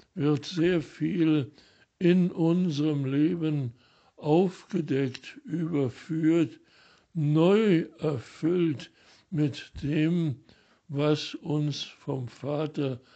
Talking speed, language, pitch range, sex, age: 75 wpm, German, 135-165 Hz, male, 60-79